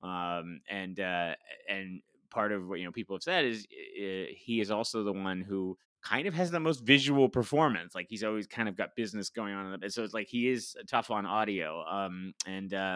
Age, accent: 30-49, American